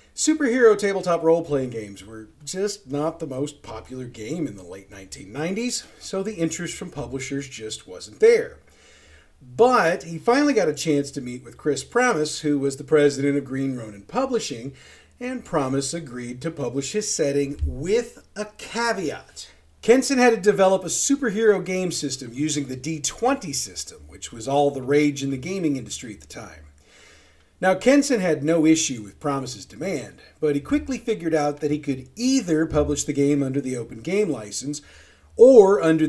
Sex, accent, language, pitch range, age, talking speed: male, American, English, 130-185 Hz, 40-59, 170 wpm